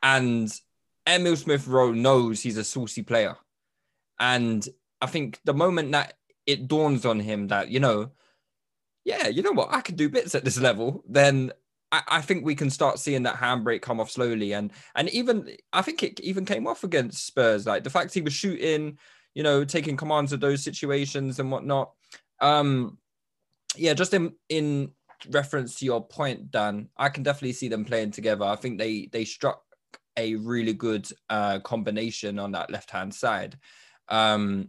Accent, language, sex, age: British, English, male, 20-39